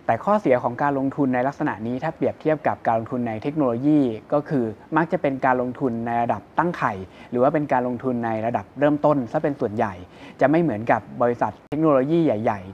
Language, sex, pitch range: Thai, male, 115-150 Hz